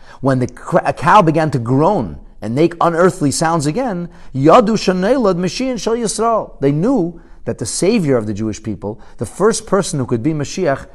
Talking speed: 155 wpm